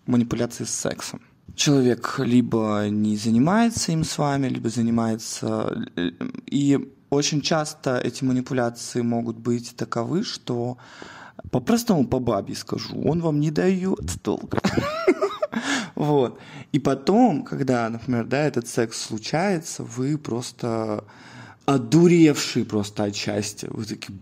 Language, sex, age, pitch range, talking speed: Russian, male, 20-39, 120-145 Hz, 110 wpm